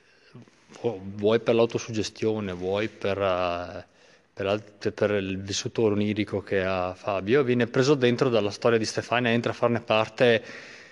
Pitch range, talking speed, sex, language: 110-150 Hz, 130 wpm, male, Italian